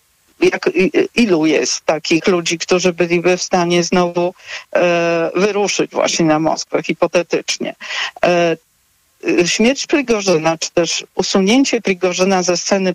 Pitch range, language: 170-195 Hz, Polish